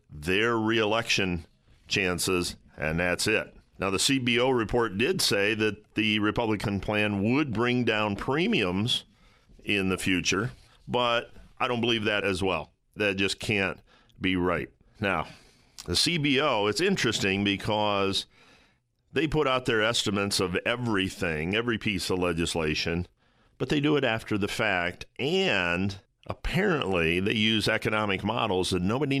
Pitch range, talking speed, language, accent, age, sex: 95-120 Hz, 140 wpm, English, American, 50-69, male